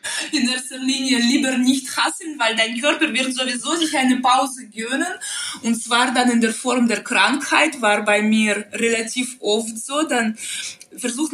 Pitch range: 225-275 Hz